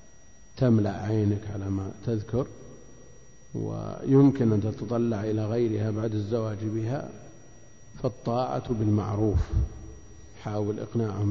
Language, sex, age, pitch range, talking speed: Arabic, male, 50-69, 105-120 Hz, 90 wpm